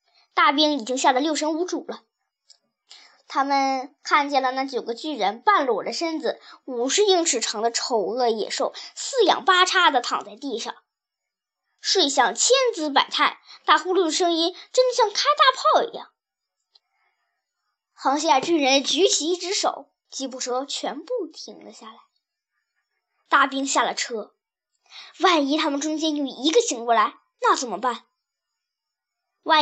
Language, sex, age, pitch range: Chinese, male, 10-29, 265-360 Hz